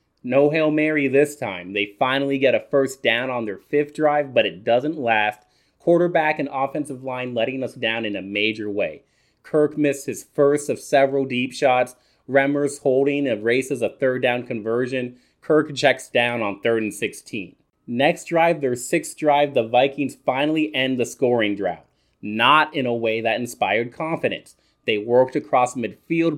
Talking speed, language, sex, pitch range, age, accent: 175 wpm, English, male, 120-150 Hz, 30-49, American